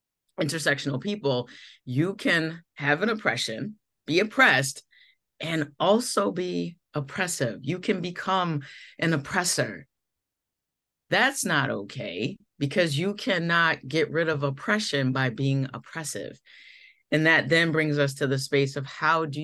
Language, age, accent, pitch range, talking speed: English, 30-49, American, 135-175 Hz, 130 wpm